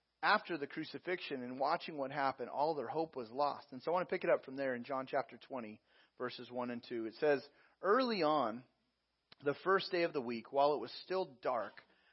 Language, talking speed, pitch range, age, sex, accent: English, 225 wpm, 130-170 Hz, 30-49, male, American